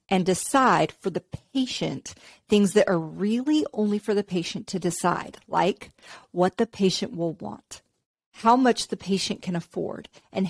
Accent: American